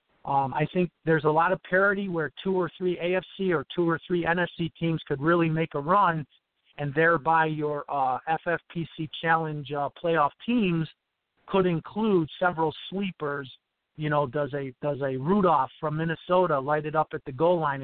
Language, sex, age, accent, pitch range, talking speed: English, male, 50-69, American, 145-175 Hz, 180 wpm